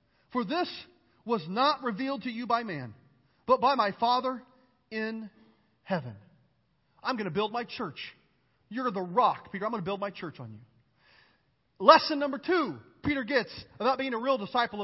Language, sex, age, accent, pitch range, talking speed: English, male, 40-59, American, 190-265 Hz, 175 wpm